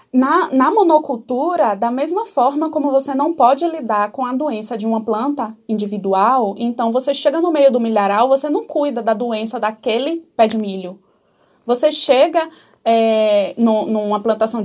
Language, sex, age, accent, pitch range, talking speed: Portuguese, female, 20-39, Brazilian, 225-325 Hz, 155 wpm